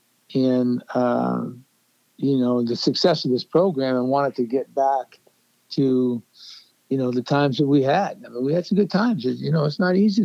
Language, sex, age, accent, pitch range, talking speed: English, male, 60-79, American, 125-145 Hz, 180 wpm